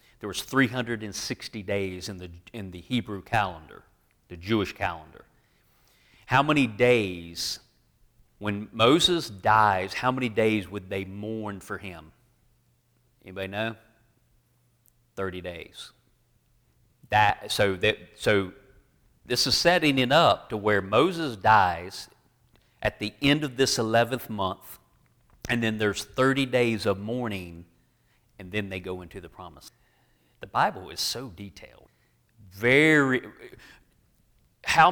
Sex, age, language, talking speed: male, 40-59, English, 120 wpm